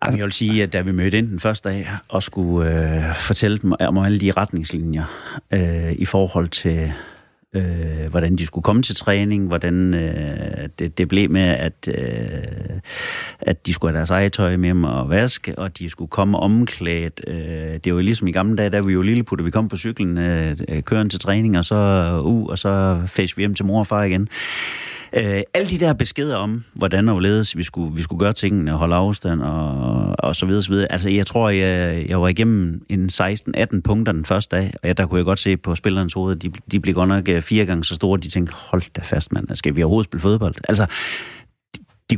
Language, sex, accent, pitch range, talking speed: Danish, male, native, 85-105 Hz, 225 wpm